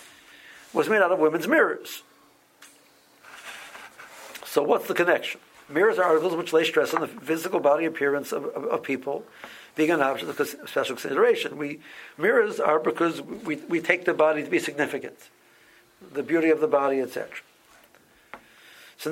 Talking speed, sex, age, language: 155 wpm, male, 60-79, English